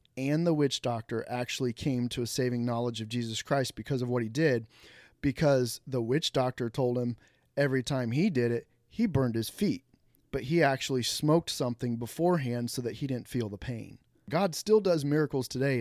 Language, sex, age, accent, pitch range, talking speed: English, male, 30-49, American, 120-145 Hz, 195 wpm